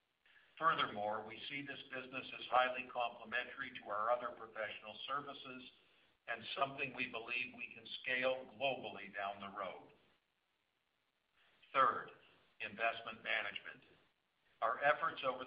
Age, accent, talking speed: 60-79, American, 115 wpm